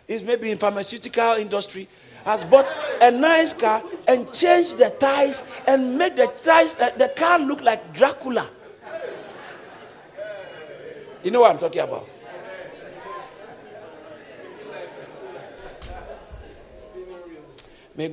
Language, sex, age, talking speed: English, male, 50-69, 105 wpm